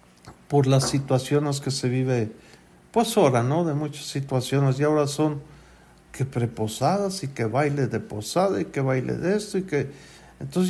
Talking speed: 170 wpm